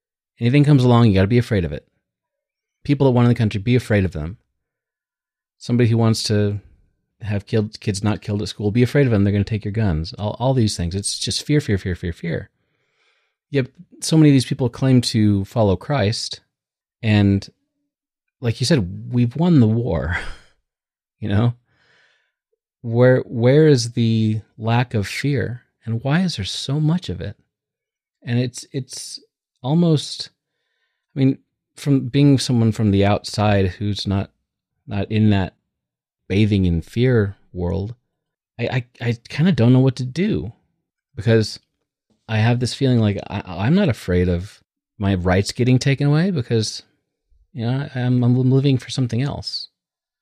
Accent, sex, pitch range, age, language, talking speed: American, male, 100-130 Hz, 30-49, English, 170 wpm